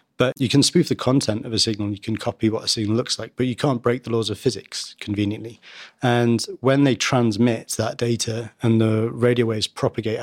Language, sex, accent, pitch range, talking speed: English, male, British, 110-125 Hz, 215 wpm